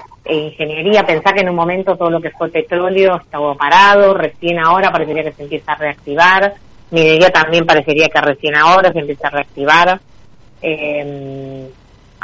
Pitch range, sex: 145-175 Hz, female